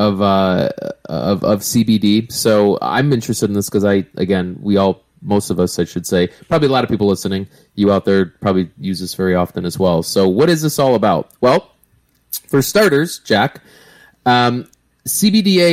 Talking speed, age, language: 185 wpm, 30-49, English